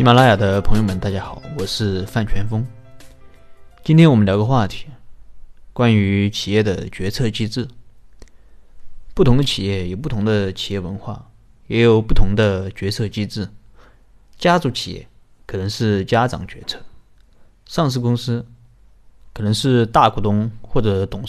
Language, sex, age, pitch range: Chinese, male, 30-49, 100-125 Hz